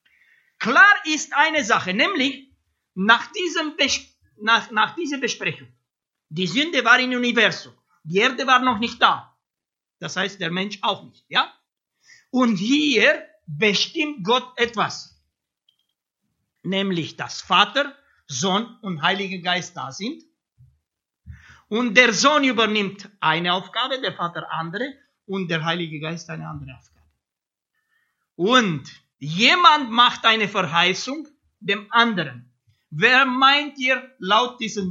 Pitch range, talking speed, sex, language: 170-260 Hz, 125 wpm, male, English